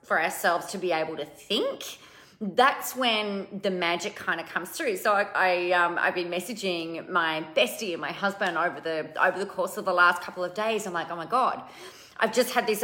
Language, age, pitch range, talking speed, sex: English, 30-49, 180-240 Hz, 220 wpm, female